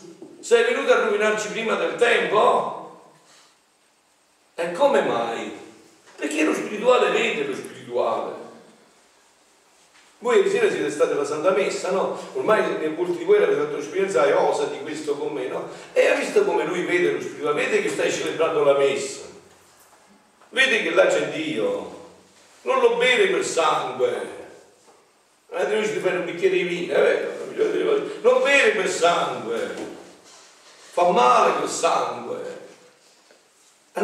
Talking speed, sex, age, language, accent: 145 wpm, male, 60-79, Italian, native